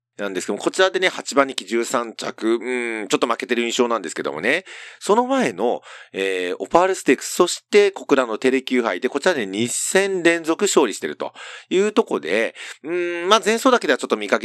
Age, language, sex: 40-59, Japanese, male